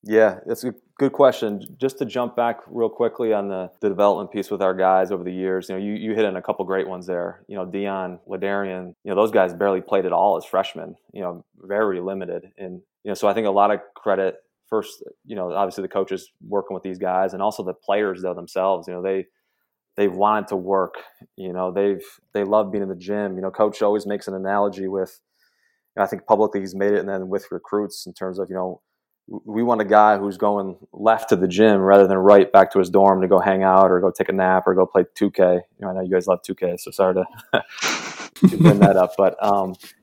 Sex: male